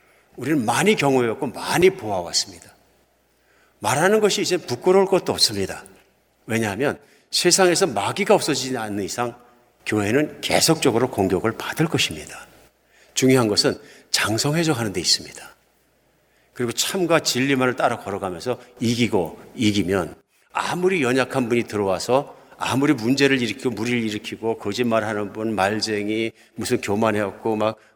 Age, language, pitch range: 50-69, Korean, 105-130 Hz